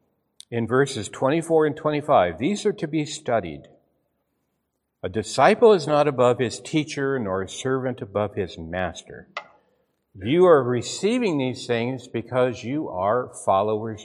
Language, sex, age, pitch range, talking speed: English, male, 60-79, 120-185 Hz, 135 wpm